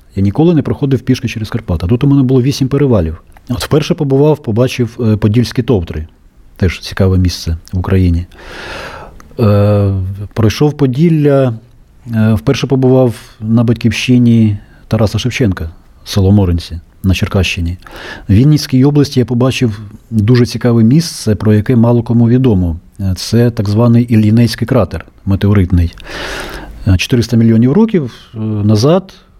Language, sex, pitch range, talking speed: Russian, male, 100-125 Hz, 120 wpm